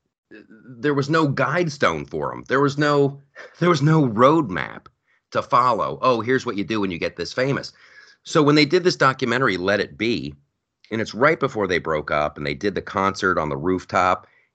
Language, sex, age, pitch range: English, male, 30-49, 100-140 Hz